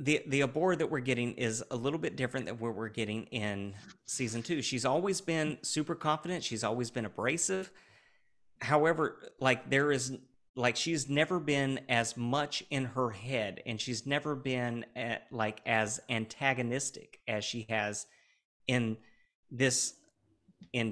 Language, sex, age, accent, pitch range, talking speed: English, male, 40-59, American, 110-145 Hz, 155 wpm